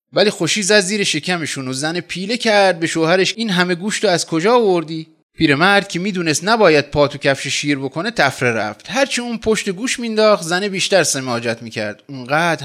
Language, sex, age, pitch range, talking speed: Persian, male, 30-49, 130-190 Hz, 180 wpm